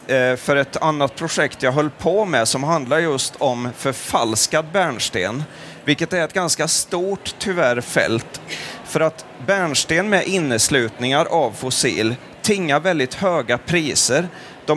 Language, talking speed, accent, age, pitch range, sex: Swedish, 135 wpm, native, 30-49, 135-175 Hz, male